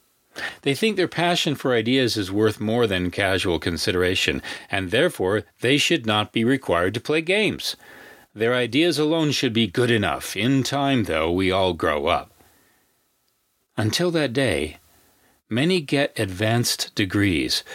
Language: English